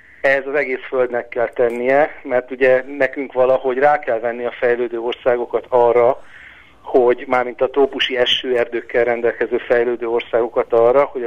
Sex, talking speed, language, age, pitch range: male, 145 wpm, Hungarian, 50-69, 120-140 Hz